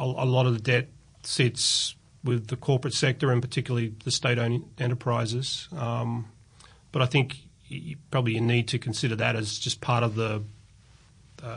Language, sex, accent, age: English, male, Australian, 40-59